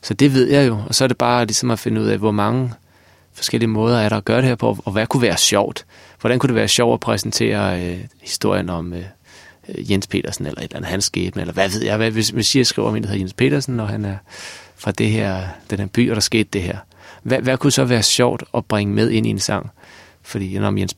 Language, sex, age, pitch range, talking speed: Danish, male, 30-49, 95-115 Hz, 265 wpm